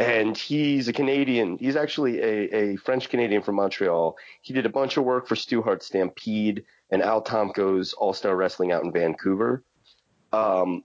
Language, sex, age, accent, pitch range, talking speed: English, male, 30-49, American, 100-135 Hz, 160 wpm